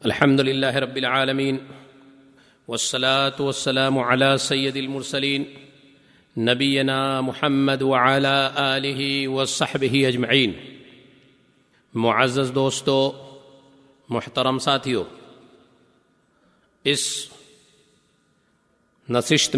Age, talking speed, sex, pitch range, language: 50-69, 65 wpm, male, 130-145 Hz, Urdu